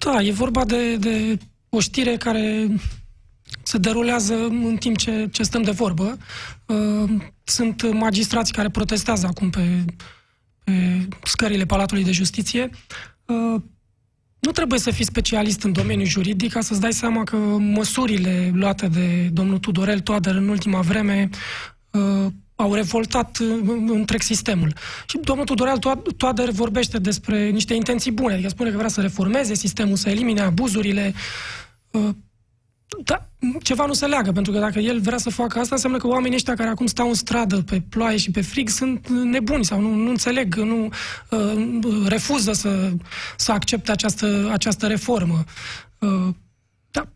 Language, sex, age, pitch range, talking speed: Romanian, male, 20-39, 200-235 Hz, 145 wpm